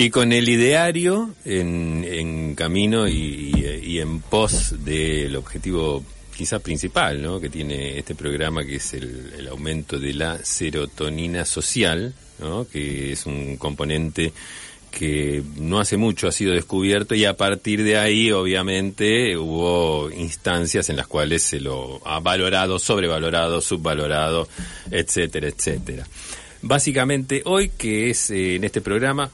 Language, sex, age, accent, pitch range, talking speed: Spanish, male, 40-59, Argentinian, 80-105 Hz, 145 wpm